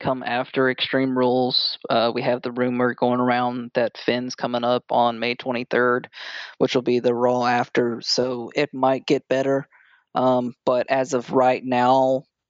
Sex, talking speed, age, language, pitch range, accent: male, 170 wpm, 20-39, English, 125-135 Hz, American